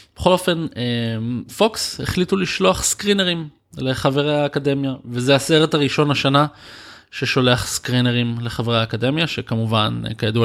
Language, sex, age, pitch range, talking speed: Hebrew, male, 20-39, 110-130 Hz, 105 wpm